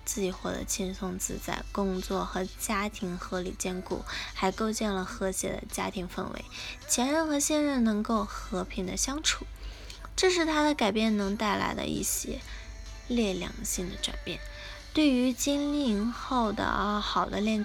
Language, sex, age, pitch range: Chinese, female, 10-29, 200-260 Hz